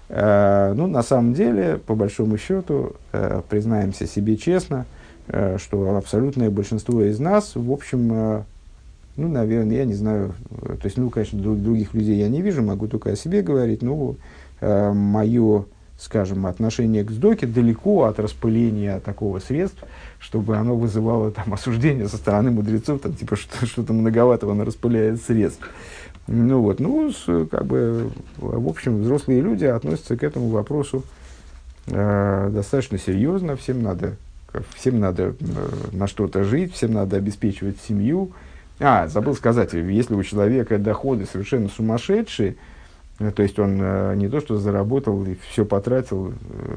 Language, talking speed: Russian, 140 wpm